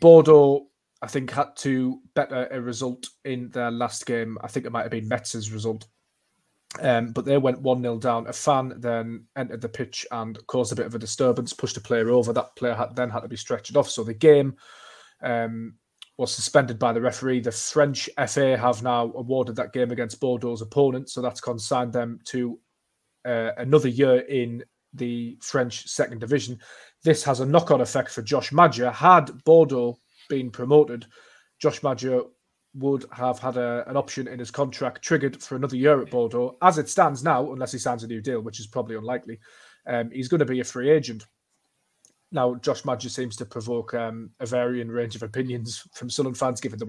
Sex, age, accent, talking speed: male, 20-39, British, 195 wpm